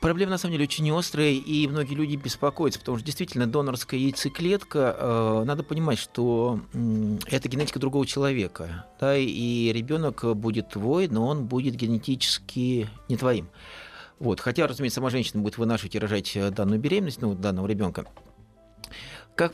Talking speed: 155 wpm